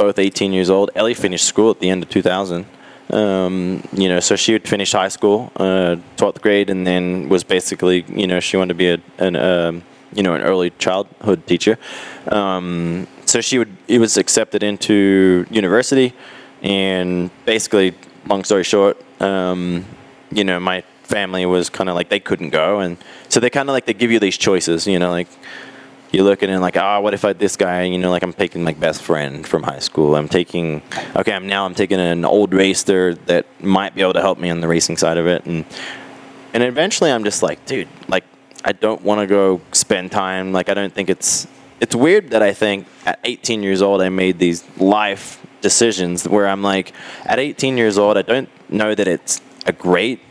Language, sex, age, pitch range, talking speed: English, male, 20-39, 90-105 Hz, 210 wpm